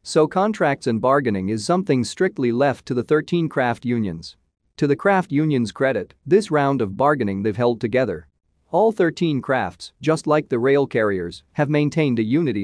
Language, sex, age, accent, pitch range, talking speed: English, male, 40-59, American, 110-150 Hz, 175 wpm